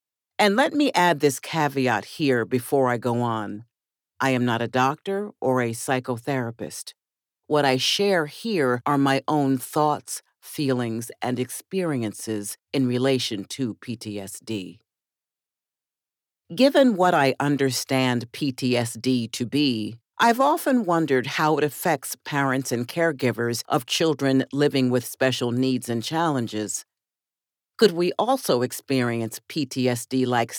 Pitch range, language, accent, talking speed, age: 120-160 Hz, English, American, 125 wpm, 50-69